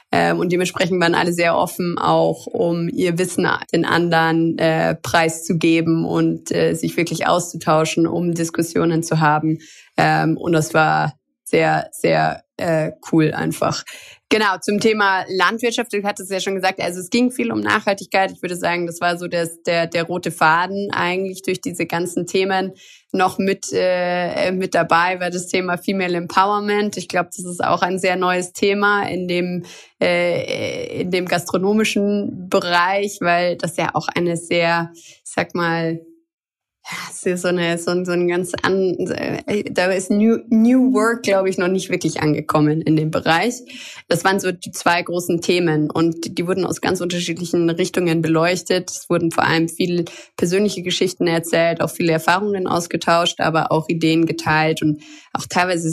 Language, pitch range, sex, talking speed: German, 165-190 Hz, female, 165 wpm